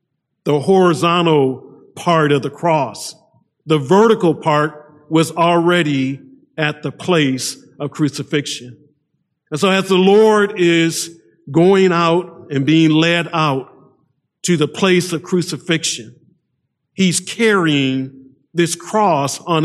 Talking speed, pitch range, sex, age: 115 wpm, 145-180 Hz, male, 50-69